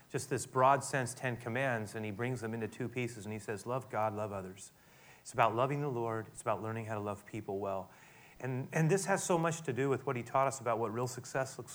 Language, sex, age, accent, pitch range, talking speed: English, male, 30-49, American, 110-130 Hz, 260 wpm